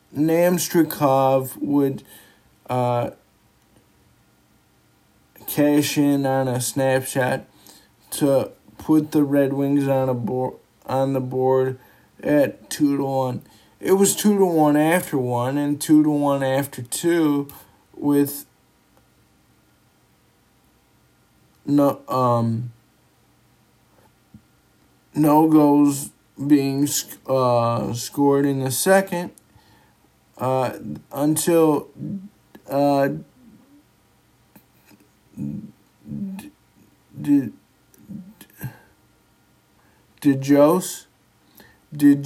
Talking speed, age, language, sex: 75 wpm, 50-69, English, male